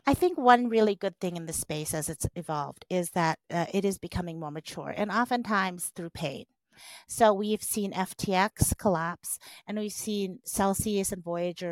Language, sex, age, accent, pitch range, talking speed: English, female, 40-59, American, 165-215 Hz, 180 wpm